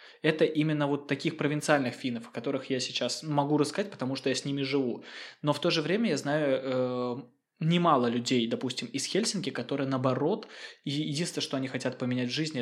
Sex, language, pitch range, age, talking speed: male, Russian, 125-155 Hz, 20-39, 195 wpm